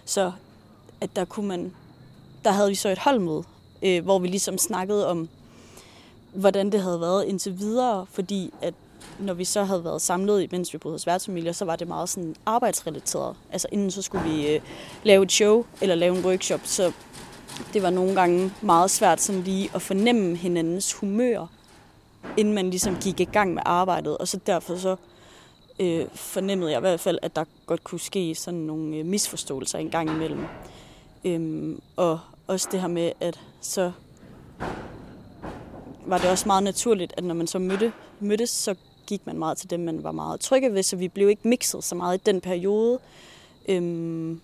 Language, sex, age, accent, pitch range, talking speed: Danish, female, 30-49, native, 170-200 Hz, 180 wpm